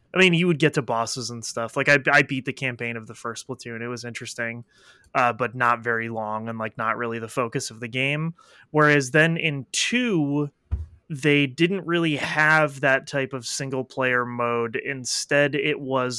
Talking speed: 195 wpm